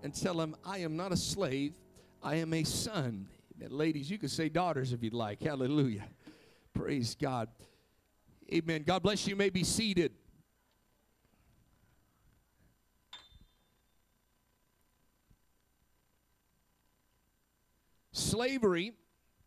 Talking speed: 100 wpm